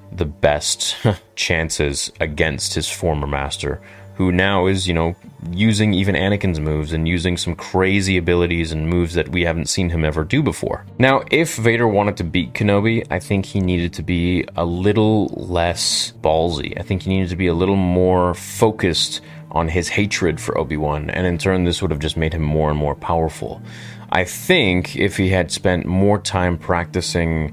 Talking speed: 185 wpm